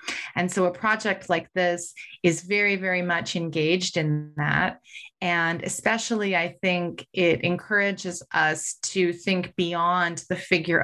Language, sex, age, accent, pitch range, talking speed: English, female, 30-49, American, 160-185 Hz, 140 wpm